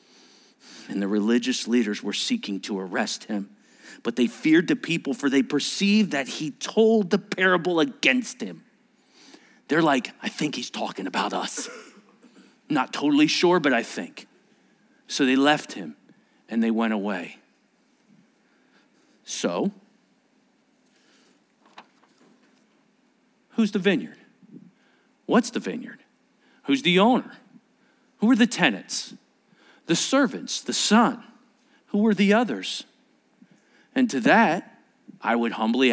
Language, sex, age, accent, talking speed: English, male, 50-69, American, 125 wpm